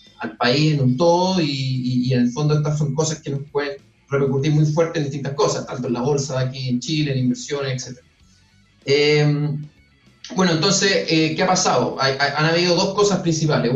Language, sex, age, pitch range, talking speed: Spanish, male, 30-49, 130-155 Hz, 205 wpm